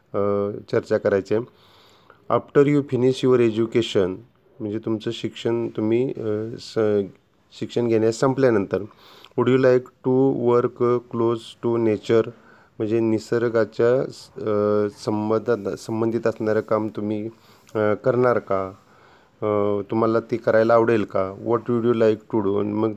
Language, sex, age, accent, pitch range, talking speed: Marathi, male, 30-49, native, 105-120 Hz, 125 wpm